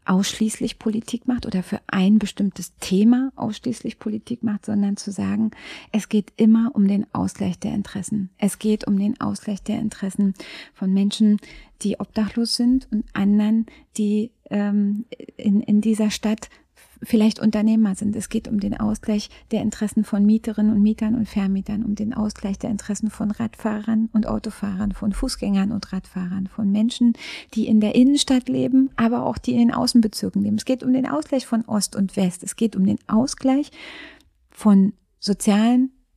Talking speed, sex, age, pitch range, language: 170 wpm, female, 30-49, 200-230 Hz, German